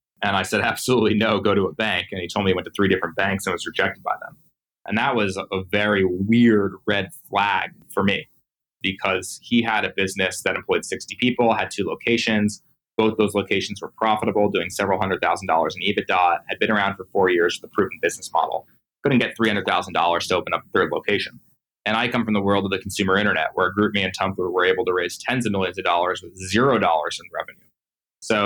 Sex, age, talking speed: male, 20-39, 225 wpm